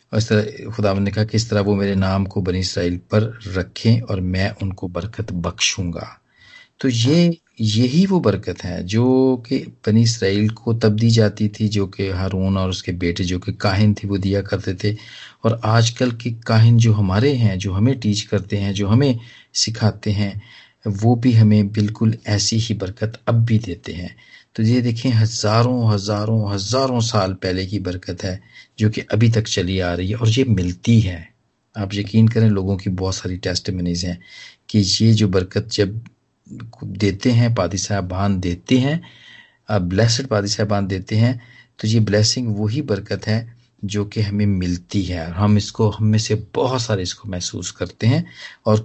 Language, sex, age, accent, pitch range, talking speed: Hindi, male, 40-59, native, 100-115 Hz, 185 wpm